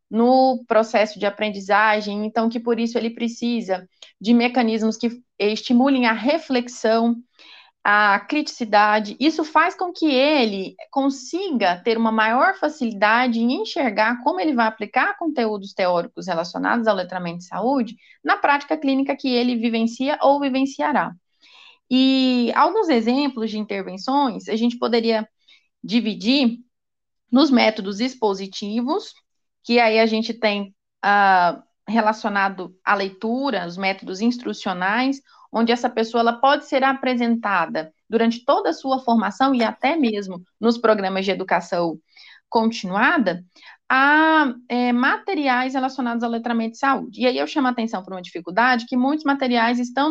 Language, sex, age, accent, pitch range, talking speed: Portuguese, female, 20-39, Brazilian, 215-270 Hz, 135 wpm